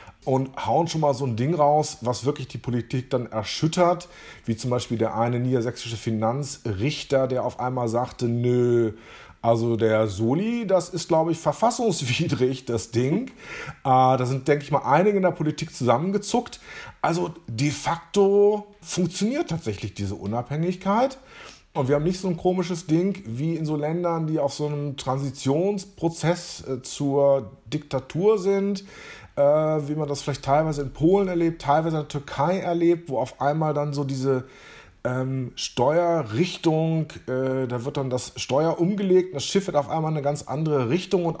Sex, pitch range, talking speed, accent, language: male, 125-165 Hz, 165 wpm, German, German